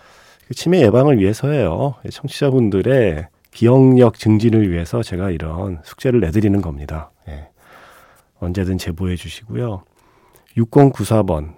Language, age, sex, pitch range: Korean, 40-59, male, 95-135 Hz